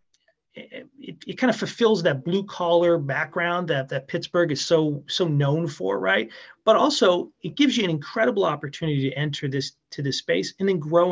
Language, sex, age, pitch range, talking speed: English, male, 30-49, 140-185 Hz, 190 wpm